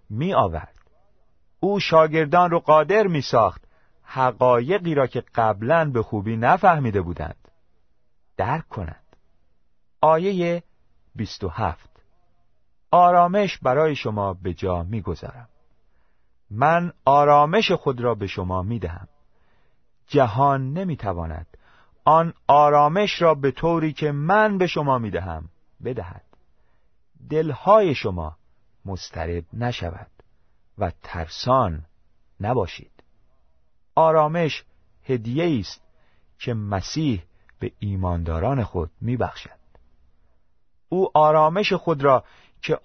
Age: 40-59